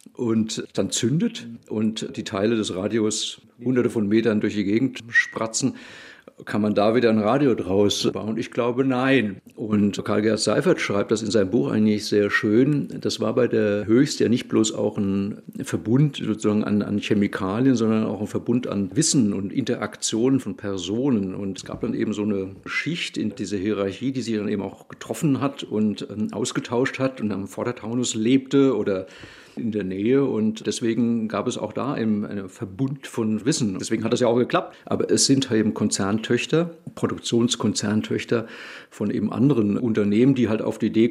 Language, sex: German, male